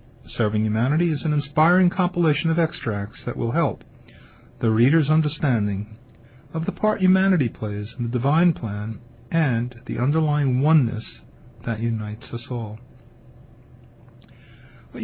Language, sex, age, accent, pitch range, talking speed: English, male, 50-69, American, 115-145 Hz, 130 wpm